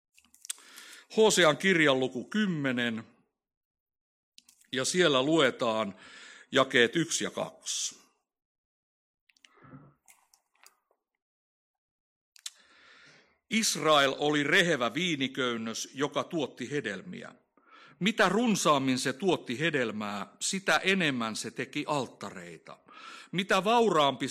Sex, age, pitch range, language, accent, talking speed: male, 60-79, 120-180 Hz, Finnish, native, 75 wpm